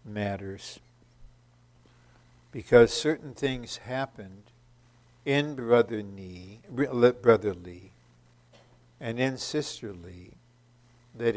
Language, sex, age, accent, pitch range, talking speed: English, male, 60-79, American, 105-125 Hz, 70 wpm